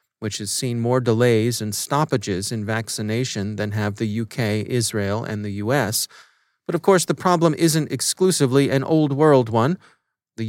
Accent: American